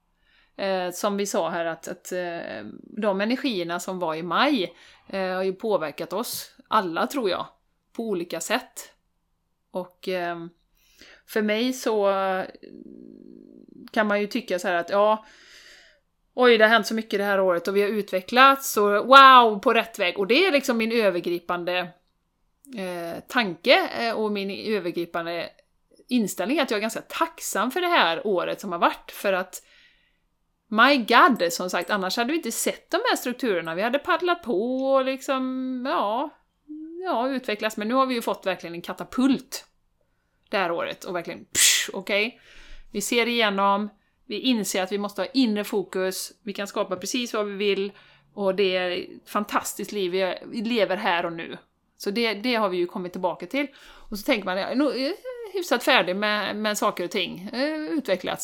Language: Swedish